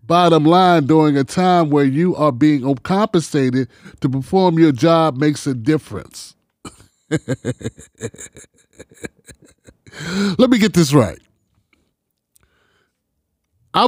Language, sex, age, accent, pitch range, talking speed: English, male, 30-49, American, 125-195 Hz, 100 wpm